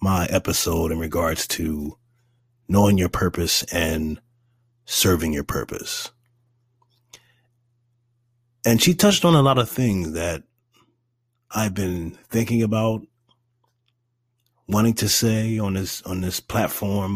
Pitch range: 95-120 Hz